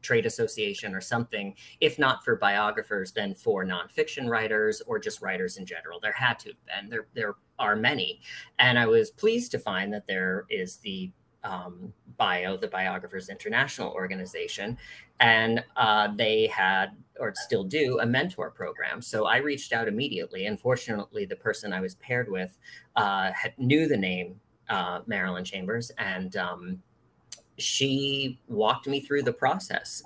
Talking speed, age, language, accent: 160 wpm, 30-49, English, American